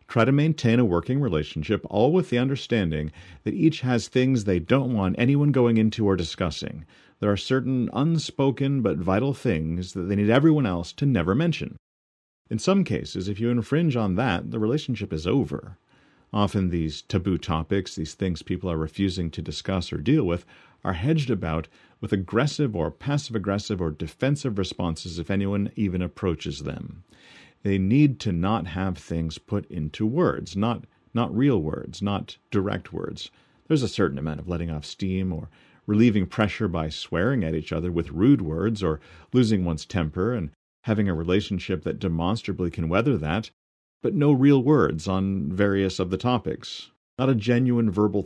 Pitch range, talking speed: 85-120 Hz, 175 wpm